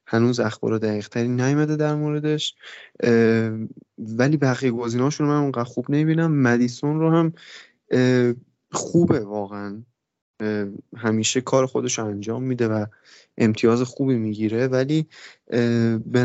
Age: 20-39